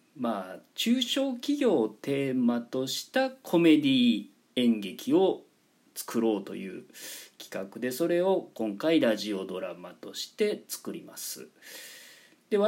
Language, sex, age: Japanese, male, 40-59